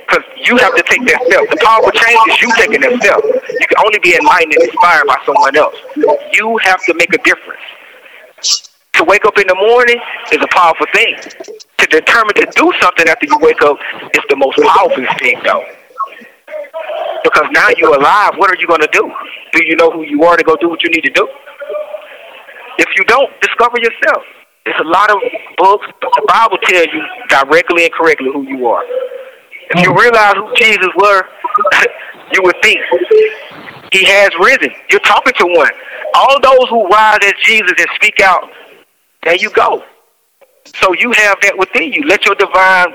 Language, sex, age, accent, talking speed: English, male, 40-59, American, 190 wpm